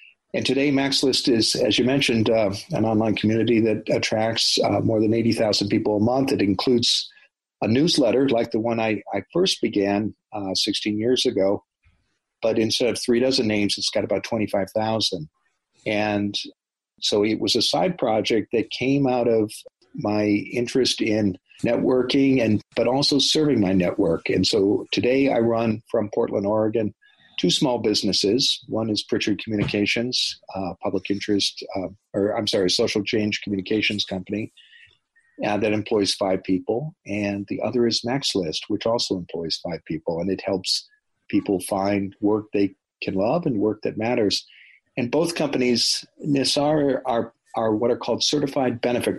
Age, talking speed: 50-69, 160 wpm